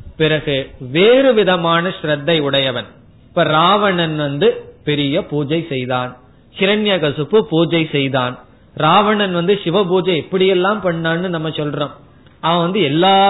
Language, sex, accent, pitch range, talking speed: Tamil, male, native, 140-180 Hz, 115 wpm